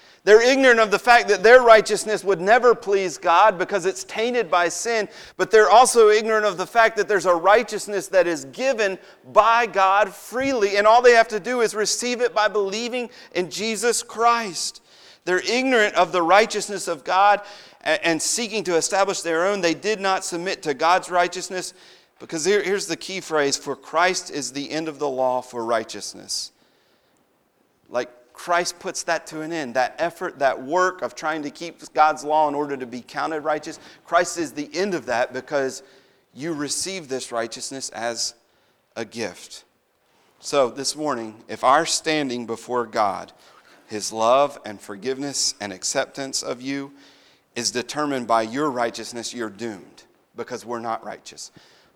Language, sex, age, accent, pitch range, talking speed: English, male, 40-59, American, 140-210 Hz, 170 wpm